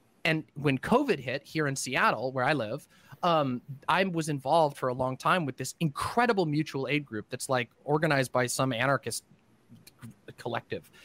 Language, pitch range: English, 130-175 Hz